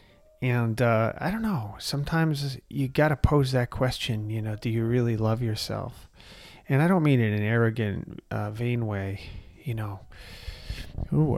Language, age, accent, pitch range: English, 30-49, American, 100-130 Hz